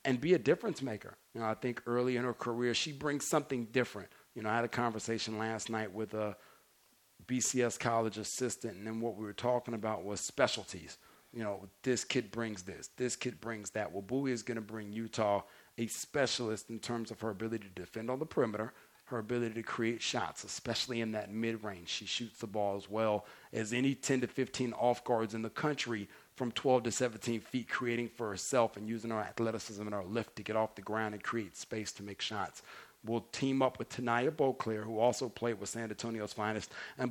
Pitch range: 110-125 Hz